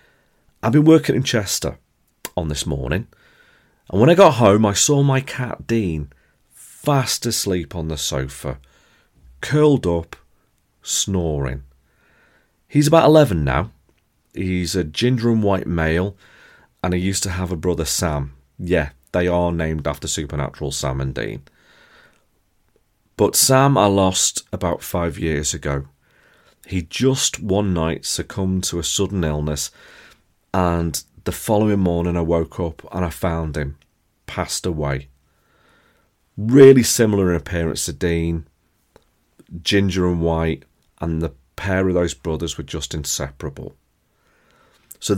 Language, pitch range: English, 80-100 Hz